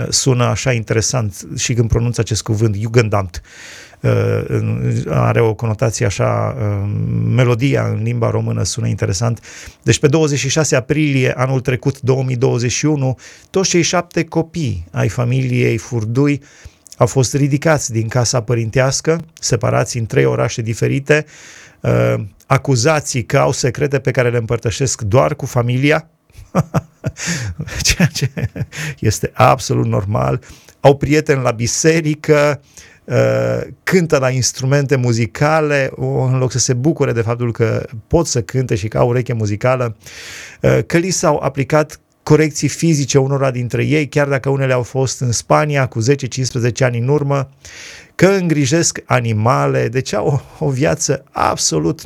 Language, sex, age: Romanian, male, 30-49